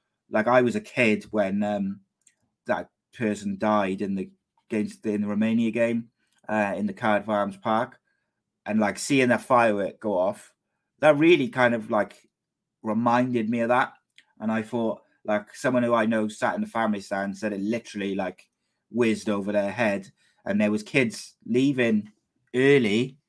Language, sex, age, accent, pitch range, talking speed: English, male, 30-49, British, 105-125 Hz, 175 wpm